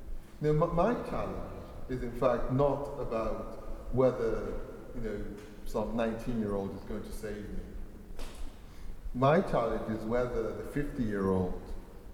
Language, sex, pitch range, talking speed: English, male, 100-125 Hz, 120 wpm